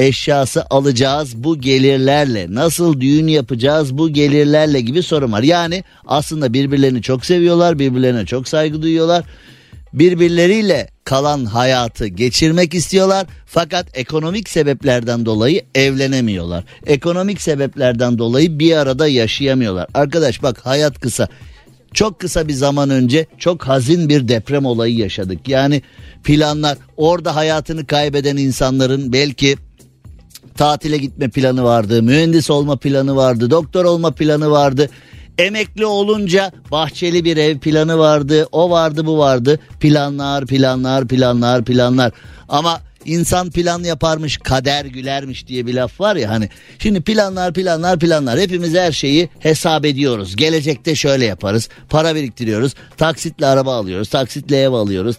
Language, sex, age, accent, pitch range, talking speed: Turkish, male, 50-69, native, 130-160 Hz, 130 wpm